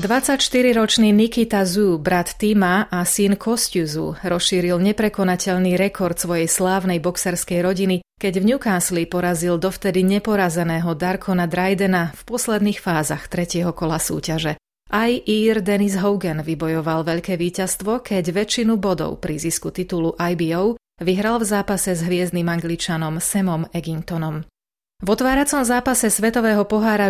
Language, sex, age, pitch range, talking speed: Slovak, female, 30-49, 170-205 Hz, 125 wpm